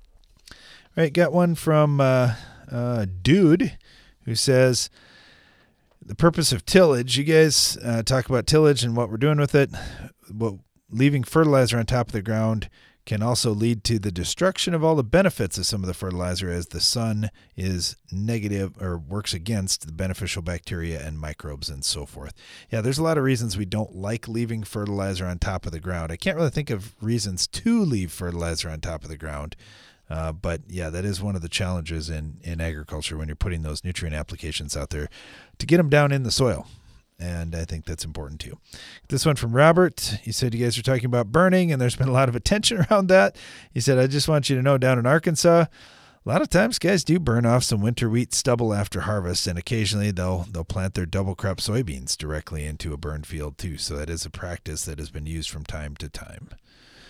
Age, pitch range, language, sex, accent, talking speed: 30-49, 85-130 Hz, English, male, American, 215 wpm